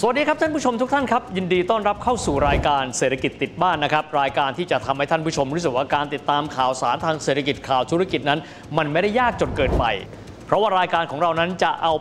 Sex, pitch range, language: male, 140-180 Hz, Thai